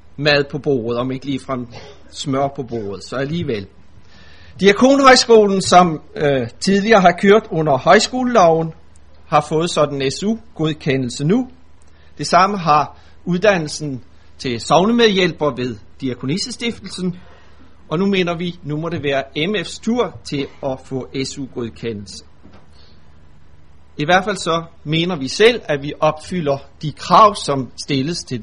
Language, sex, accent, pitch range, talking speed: Danish, male, native, 120-185 Hz, 135 wpm